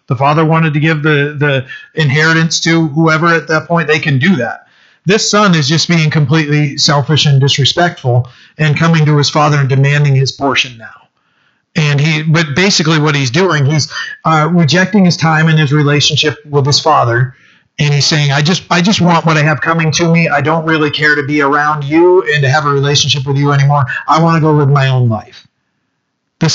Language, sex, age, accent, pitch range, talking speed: English, male, 40-59, American, 140-165 Hz, 210 wpm